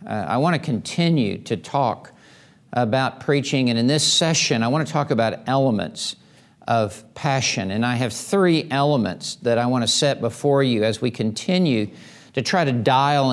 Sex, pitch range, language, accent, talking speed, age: male, 120-155 Hz, English, American, 180 wpm, 50-69